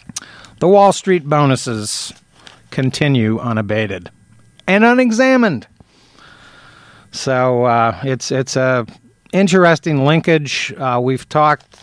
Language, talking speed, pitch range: English, 90 wpm, 120-140 Hz